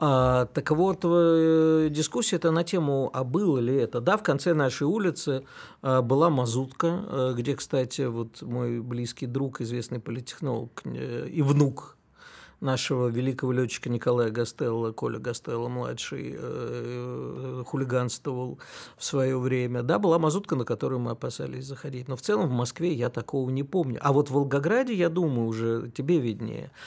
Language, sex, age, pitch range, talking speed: Russian, male, 50-69, 120-160 Hz, 140 wpm